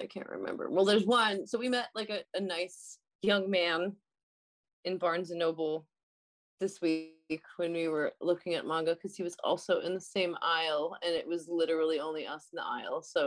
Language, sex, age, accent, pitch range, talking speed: English, female, 20-39, American, 165-235 Hz, 205 wpm